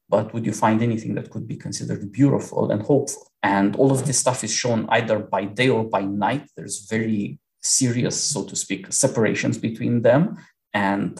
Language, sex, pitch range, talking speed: English, male, 105-130 Hz, 190 wpm